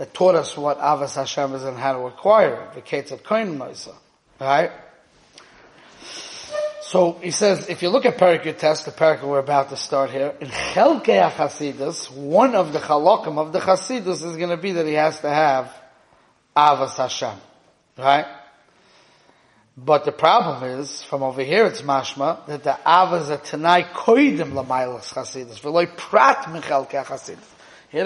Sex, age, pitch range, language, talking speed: male, 30-49, 145-180 Hz, English, 160 wpm